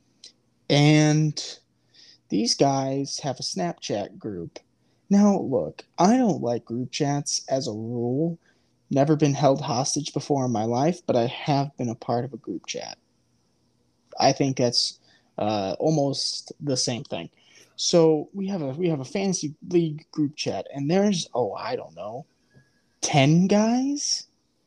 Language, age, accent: English, 20-39, American